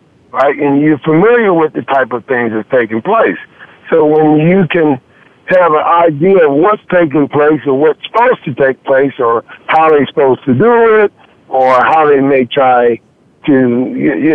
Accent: American